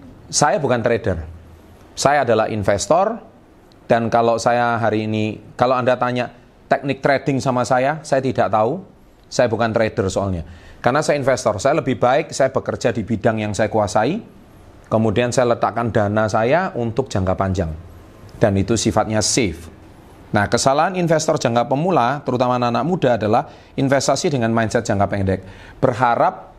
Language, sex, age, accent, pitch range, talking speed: Indonesian, male, 30-49, native, 100-130 Hz, 145 wpm